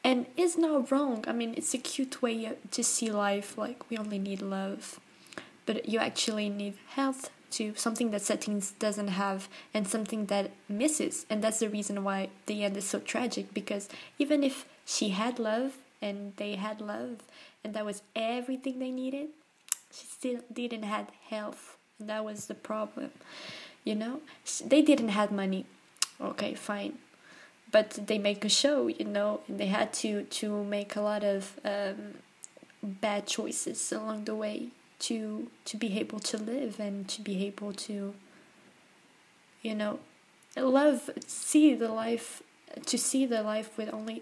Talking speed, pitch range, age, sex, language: 165 wpm, 210-255 Hz, 20-39, female, English